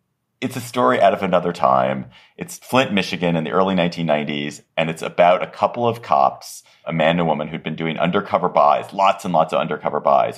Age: 40-59